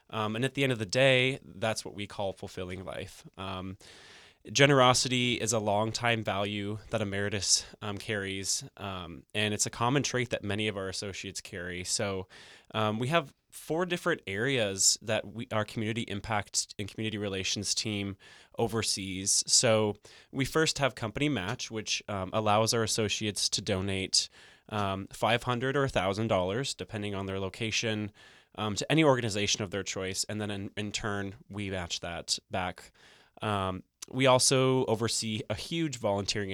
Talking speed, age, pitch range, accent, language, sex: 165 wpm, 20-39, 95-115 Hz, American, English, male